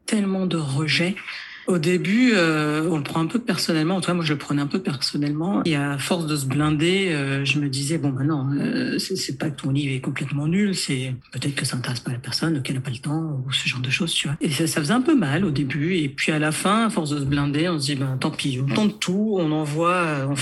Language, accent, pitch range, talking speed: French, French, 140-175 Hz, 285 wpm